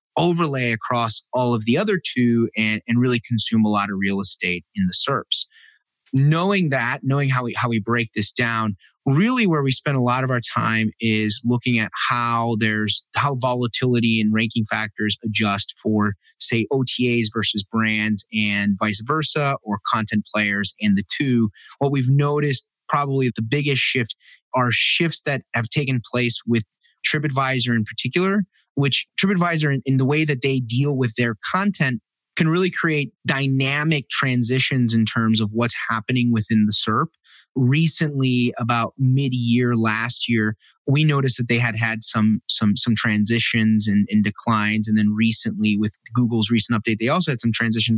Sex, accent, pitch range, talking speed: male, American, 110-140 Hz, 170 wpm